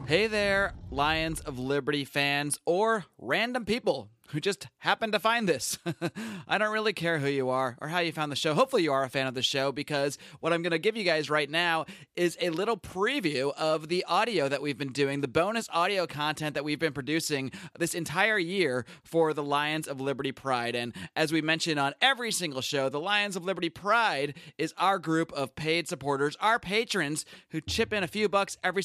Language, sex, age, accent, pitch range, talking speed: English, male, 30-49, American, 145-195 Hz, 210 wpm